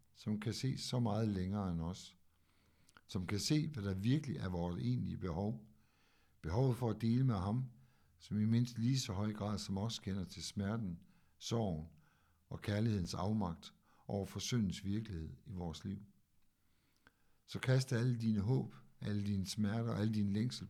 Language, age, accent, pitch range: Danish, 60-79, native, 95-115 Hz